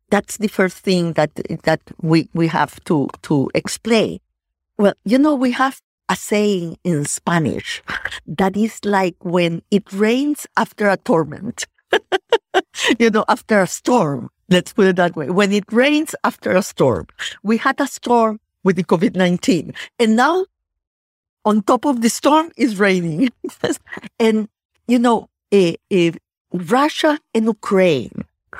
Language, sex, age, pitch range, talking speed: English, female, 50-69, 175-245 Hz, 145 wpm